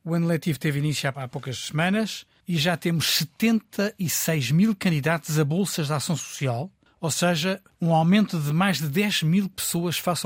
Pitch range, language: 145-180 Hz, Portuguese